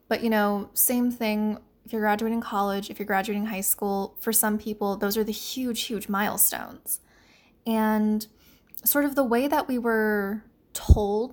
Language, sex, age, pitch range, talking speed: English, female, 10-29, 205-240 Hz, 170 wpm